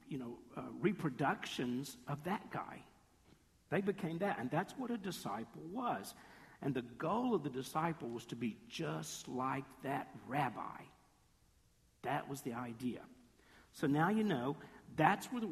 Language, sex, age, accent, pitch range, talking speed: English, male, 50-69, American, 140-200 Hz, 155 wpm